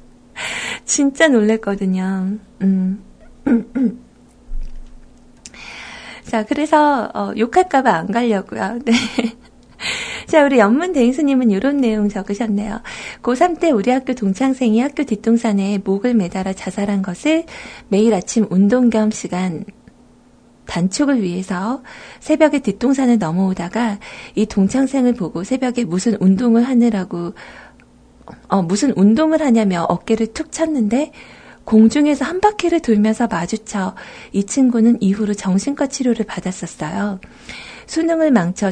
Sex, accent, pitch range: female, native, 195-255 Hz